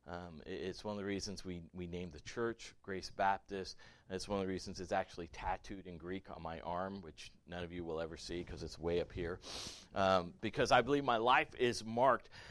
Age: 40-59